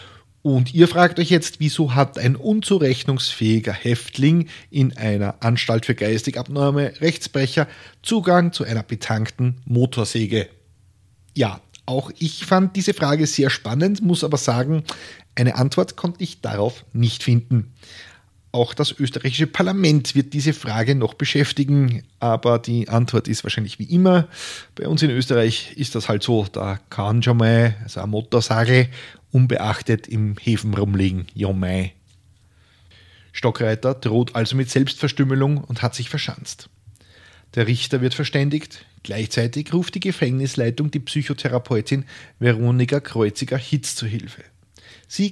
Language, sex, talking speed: German, male, 130 wpm